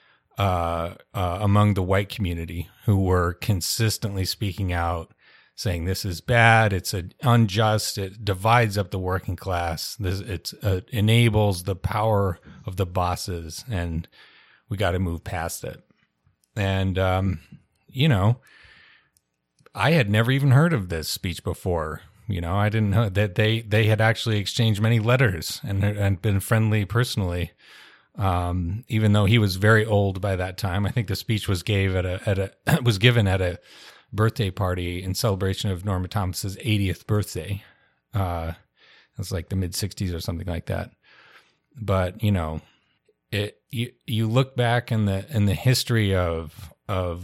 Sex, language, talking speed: male, English, 165 wpm